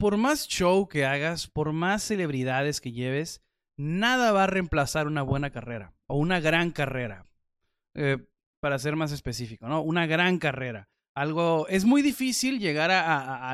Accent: Mexican